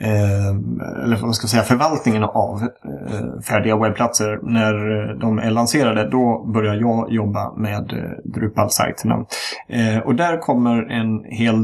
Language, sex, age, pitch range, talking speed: Swedish, male, 30-49, 105-120 Hz, 125 wpm